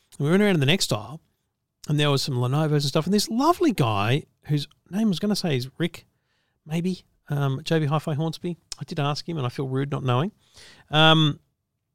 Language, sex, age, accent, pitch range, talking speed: English, male, 40-59, Australian, 140-185 Hz, 215 wpm